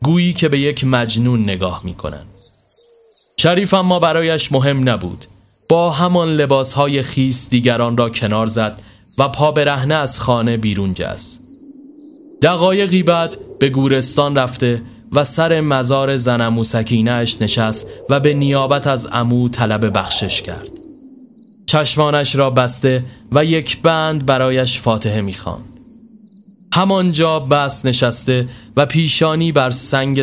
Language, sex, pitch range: Persian, male, 120-165 Hz